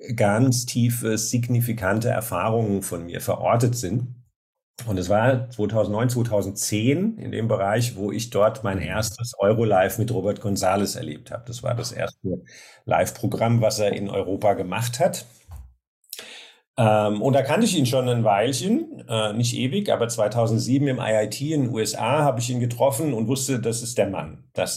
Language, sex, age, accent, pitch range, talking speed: German, male, 50-69, German, 100-125 Hz, 165 wpm